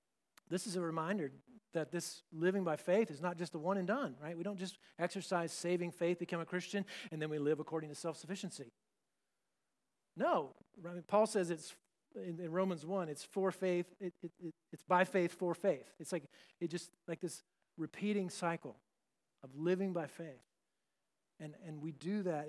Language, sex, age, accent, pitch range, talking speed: English, male, 40-59, American, 160-200 Hz, 190 wpm